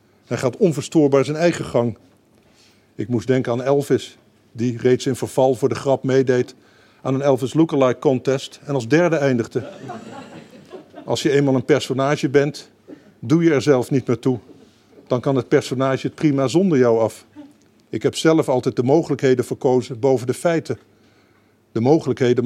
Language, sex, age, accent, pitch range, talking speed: Dutch, male, 50-69, Dutch, 115-140 Hz, 165 wpm